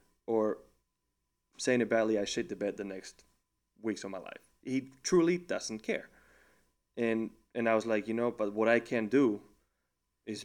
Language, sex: English, male